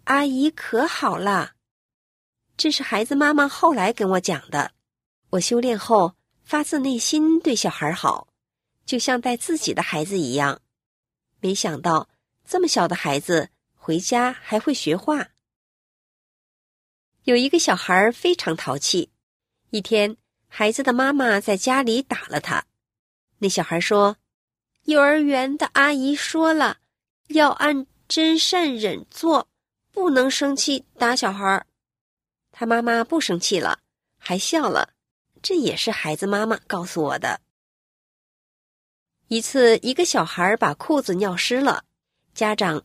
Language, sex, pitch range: Chinese, female, 190-280 Hz